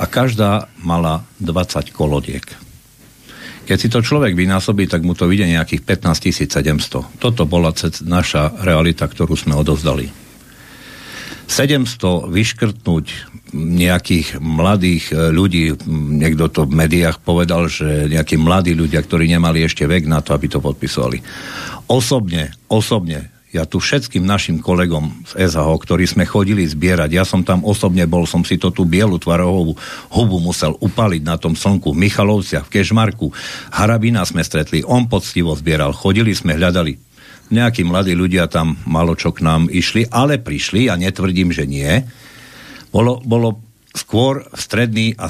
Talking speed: 145 wpm